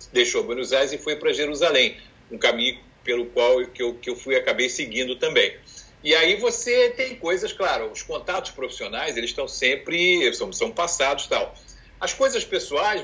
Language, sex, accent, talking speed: Portuguese, male, Brazilian, 175 wpm